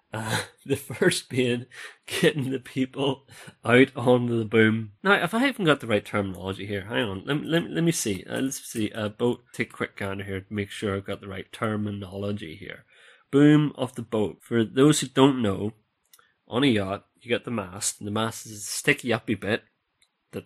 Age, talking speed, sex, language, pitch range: 30-49, 215 wpm, male, English, 105-130 Hz